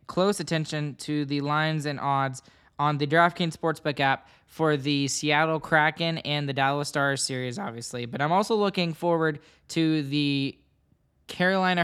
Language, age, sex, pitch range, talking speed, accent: English, 10-29, male, 140-175 Hz, 150 wpm, American